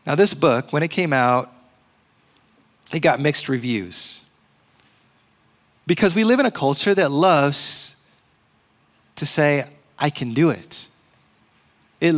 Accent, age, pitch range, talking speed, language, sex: American, 20-39, 160-215 Hz, 130 wpm, English, male